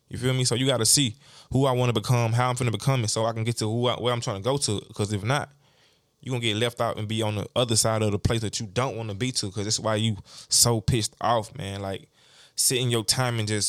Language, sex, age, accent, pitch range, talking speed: English, male, 20-39, American, 105-125 Hz, 310 wpm